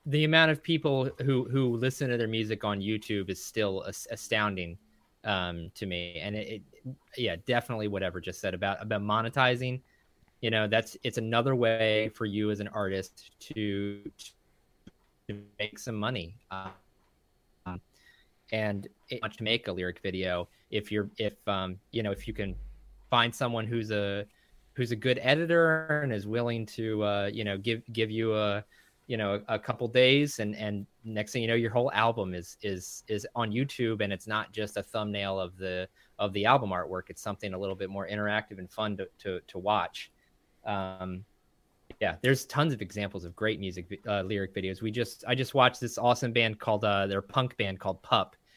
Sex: male